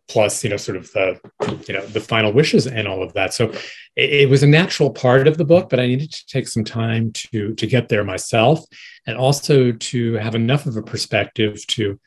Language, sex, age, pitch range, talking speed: English, male, 40-59, 110-135 Hz, 230 wpm